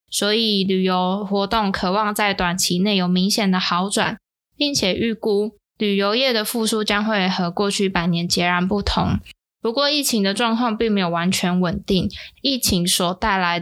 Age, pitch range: 10-29, 185-215 Hz